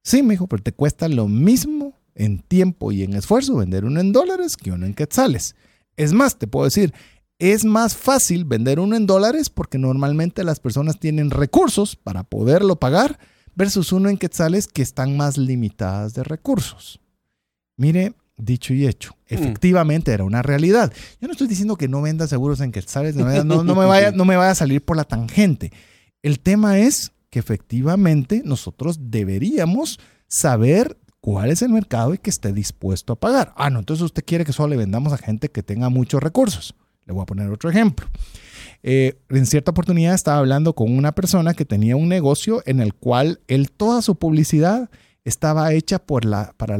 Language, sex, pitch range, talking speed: Spanish, male, 120-185 Hz, 190 wpm